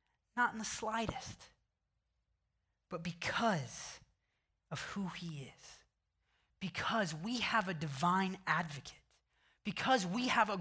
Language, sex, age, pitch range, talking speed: English, male, 20-39, 160-210 Hz, 115 wpm